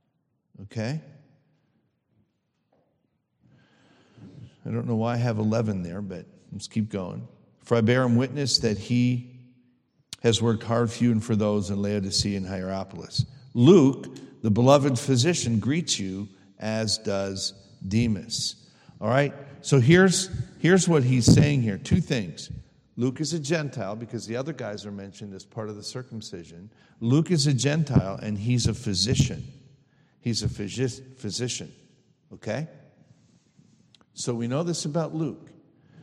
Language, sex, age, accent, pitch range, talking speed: English, male, 50-69, American, 105-140 Hz, 145 wpm